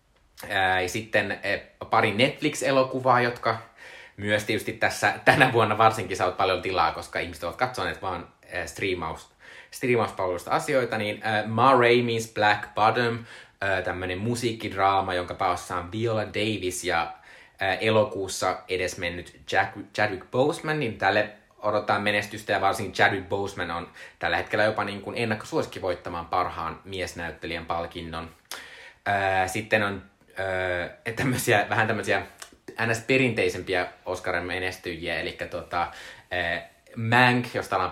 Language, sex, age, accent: Finnish, male, 20-39, native